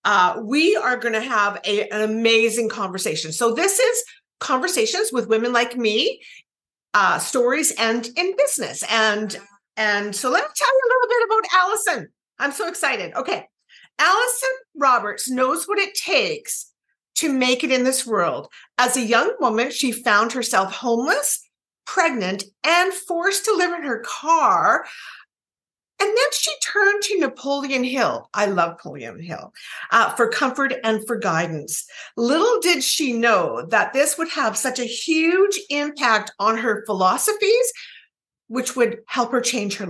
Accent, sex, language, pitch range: American, female, English, 230-350 Hz